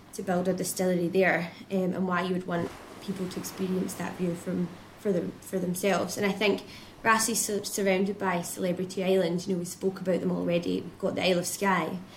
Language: Dutch